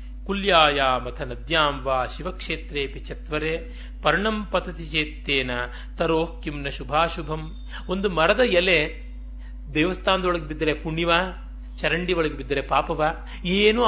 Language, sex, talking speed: Kannada, male, 90 wpm